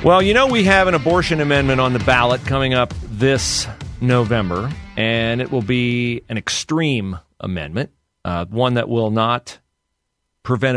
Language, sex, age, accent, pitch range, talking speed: English, male, 40-59, American, 95-125 Hz, 155 wpm